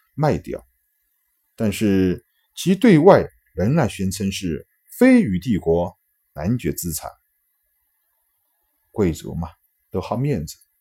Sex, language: male, Chinese